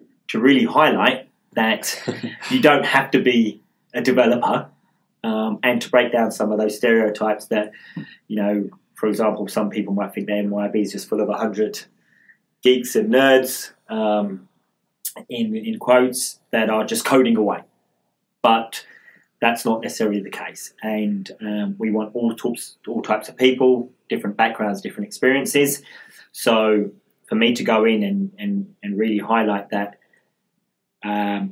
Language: English